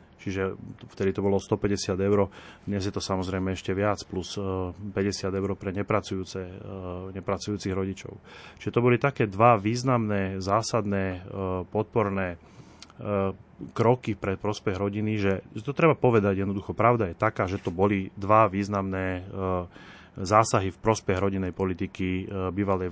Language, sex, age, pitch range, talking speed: Slovak, male, 30-49, 95-115 Hz, 130 wpm